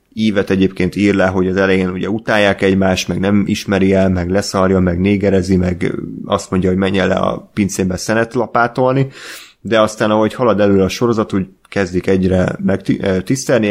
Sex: male